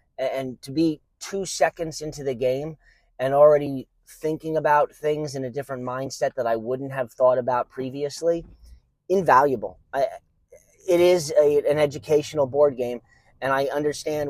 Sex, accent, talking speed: male, American, 145 wpm